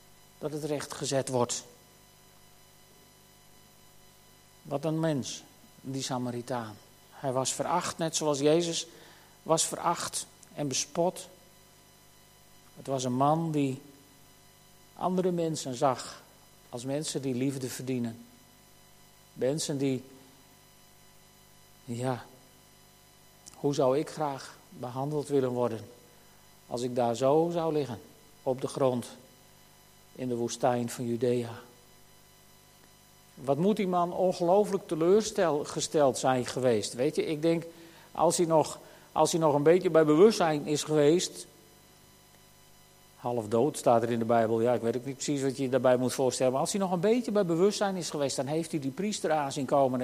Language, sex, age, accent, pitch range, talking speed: Dutch, male, 50-69, Dutch, 130-165 Hz, 140 wpm